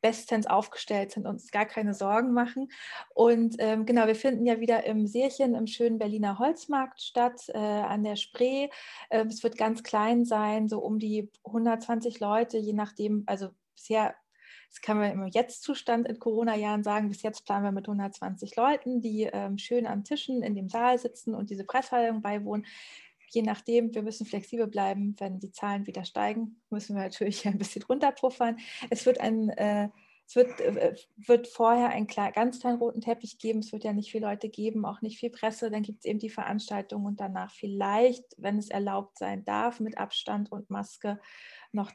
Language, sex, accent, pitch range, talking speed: German, female, German, 205-235 Hz, 180 wpm